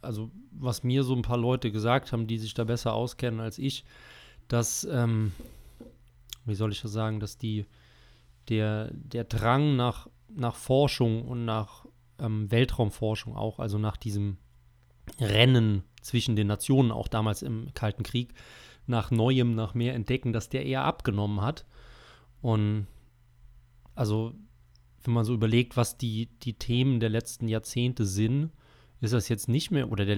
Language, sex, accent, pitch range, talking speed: German, male, German, 110-120 Hz, 155 wpm